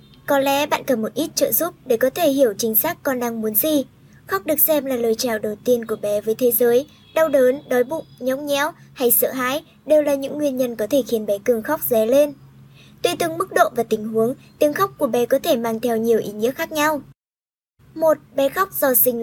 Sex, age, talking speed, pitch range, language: male, 20-39, 245 wpm, 240-300 Hz, Vietnamese